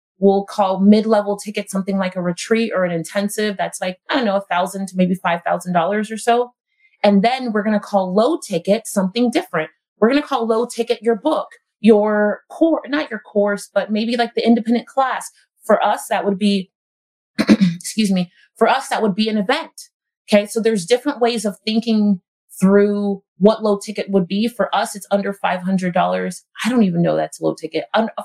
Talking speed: 190 wpm